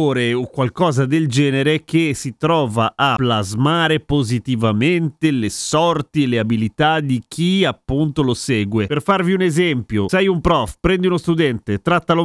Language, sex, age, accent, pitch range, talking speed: Italian, male, 40-59, native, 125-165 Hz, 150 wpm